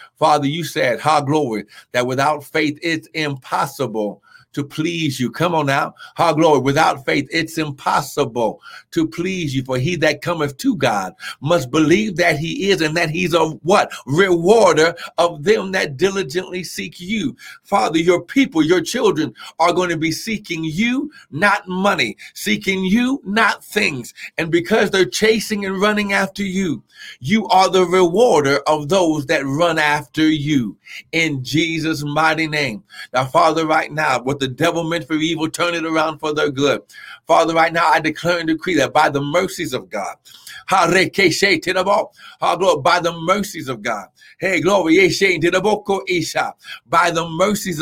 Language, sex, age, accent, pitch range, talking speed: English, male, 60-79, American, 150-190 Hz, 155 wpm